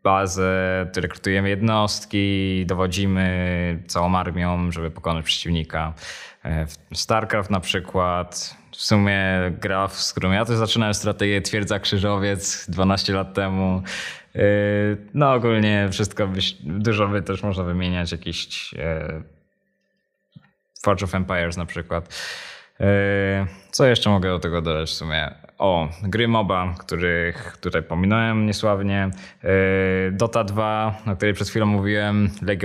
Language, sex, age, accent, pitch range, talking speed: Polish, male, 20-39, native, 85-105 Hz, 115 wpm